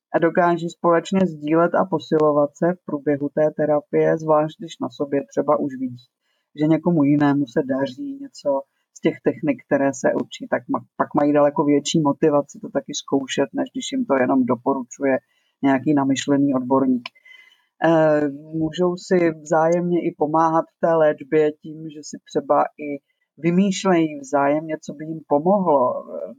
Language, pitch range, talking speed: Czech, 145-175 Hz, 150 wpm